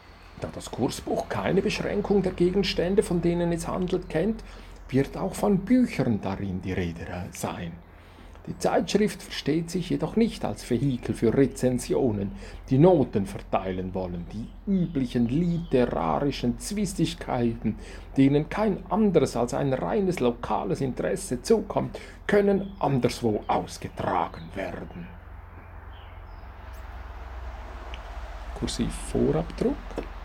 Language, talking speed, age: German, 105 wpm, 50-69